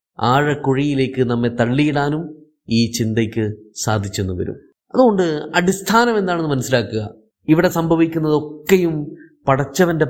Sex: male